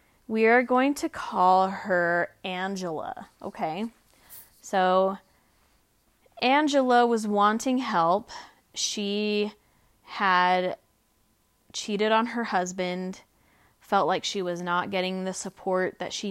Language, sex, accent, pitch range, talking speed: English, female, American, 180-220 Hz, 105 wpm